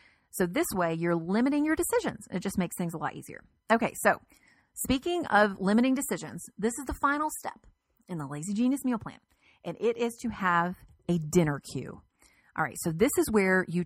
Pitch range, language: 165-225 Hz, English